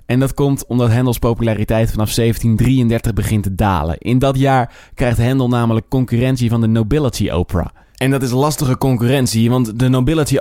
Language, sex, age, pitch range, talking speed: Dutch, male, 20-39, 115-135 Hz, 175 wpm